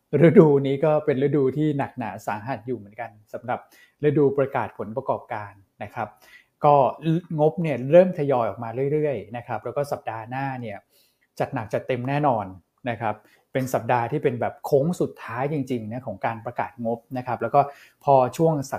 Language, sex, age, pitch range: Thai, male, 20-39, 115-145 Hz